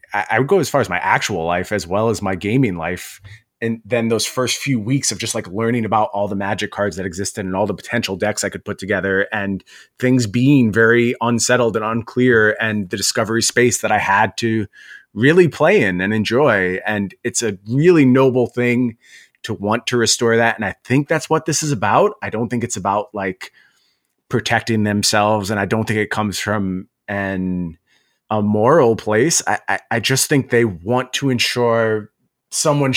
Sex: male